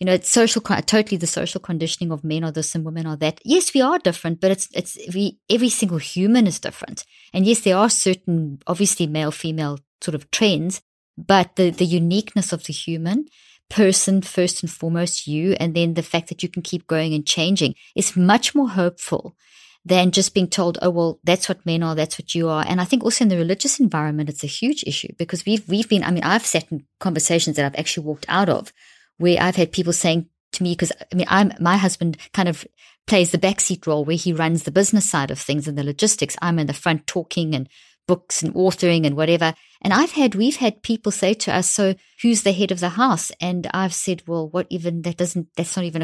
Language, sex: English, female